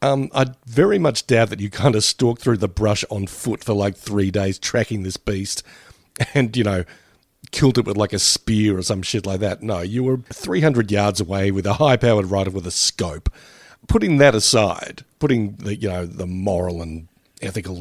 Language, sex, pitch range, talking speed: English, male, 100-125 Hz, 200 wpm